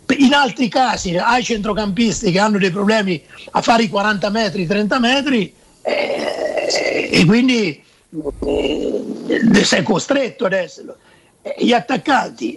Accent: native